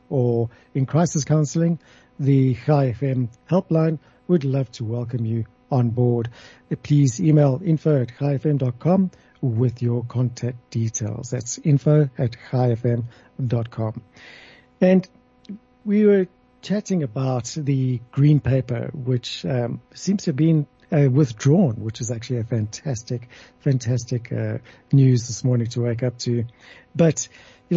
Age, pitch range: 60-79, 120-150 Hz